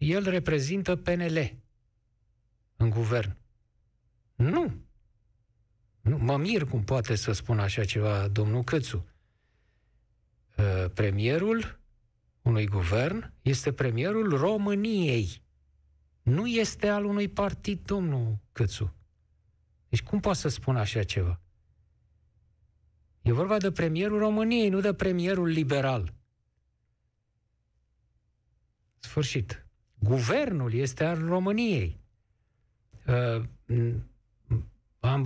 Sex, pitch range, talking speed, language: male, 105-145 Hz, 85 wpm, Romanian